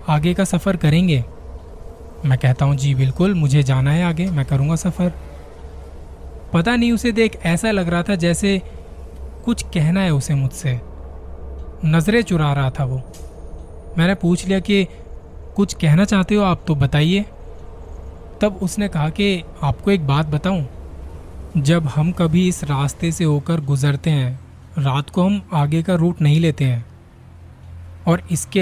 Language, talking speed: Hindi, 155 wpm